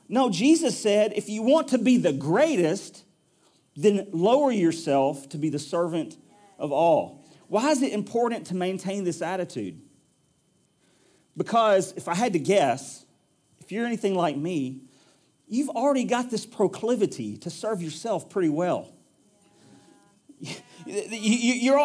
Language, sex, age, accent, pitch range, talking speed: English, male, 40-59, American, 180-255 Hz, 135 wpm